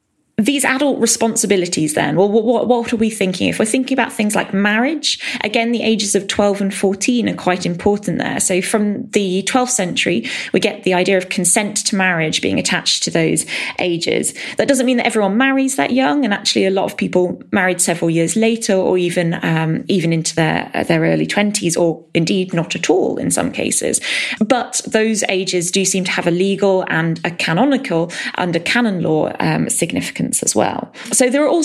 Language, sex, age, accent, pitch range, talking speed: English, female, 20-39, British, 180-235 Hz, 195 wpm